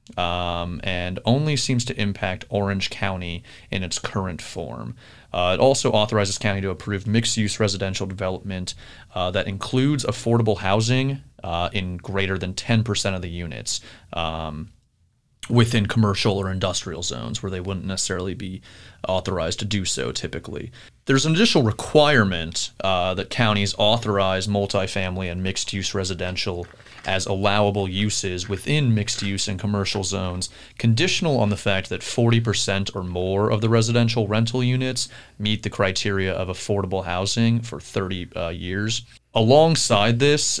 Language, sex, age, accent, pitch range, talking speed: English, male, 30-49, American, 95-115 Hz, 145 wpm